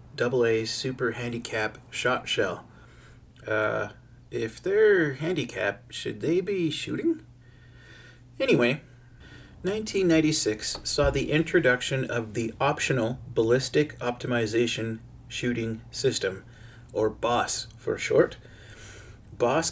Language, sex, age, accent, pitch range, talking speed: English, male, 30-49, American, 115-135 Hz, 90 wpm